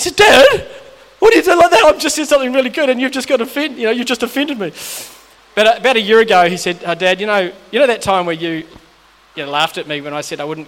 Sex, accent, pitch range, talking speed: male, Australian, 165-225 Hz, 300 wpm